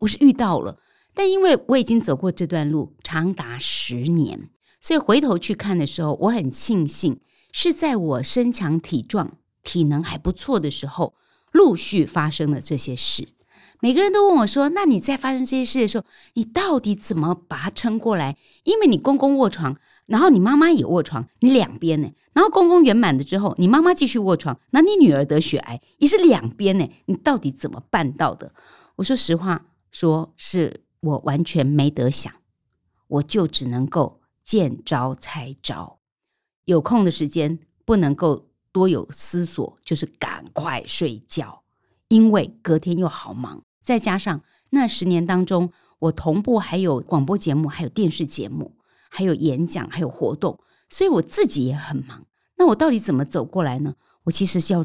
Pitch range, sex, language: 150-230 Hz, female, Chinese